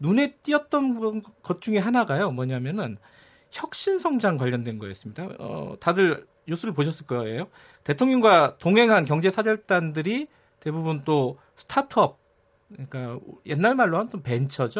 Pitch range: 135-205 Hz